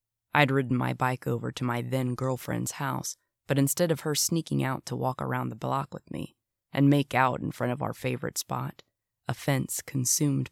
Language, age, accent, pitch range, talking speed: English, 20-39, American, 115-140 Hz, 195 wpm